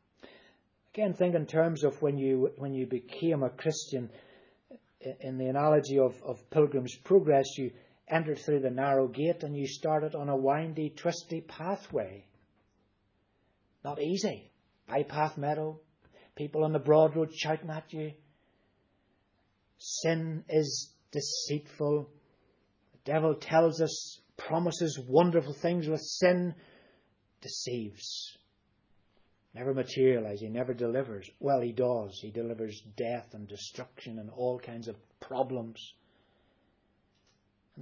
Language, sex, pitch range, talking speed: English, male, 120-160 Hz, 120 wpm